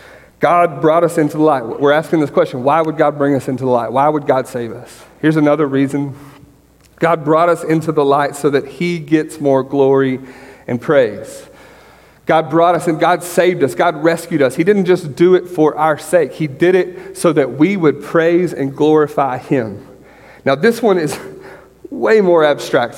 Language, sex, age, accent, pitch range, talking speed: English, male, 40-59, American, 140-170 Hz, 200 wpm